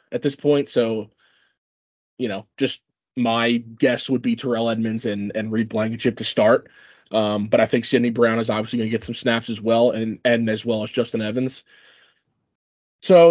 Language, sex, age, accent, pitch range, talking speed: English, male, 20-39, American, 115-150 Hz, 185 wpm